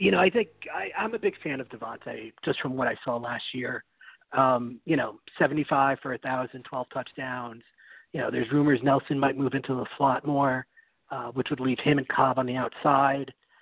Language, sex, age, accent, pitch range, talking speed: English, male, 40-59, American, 125-145 Hz, 205 wpm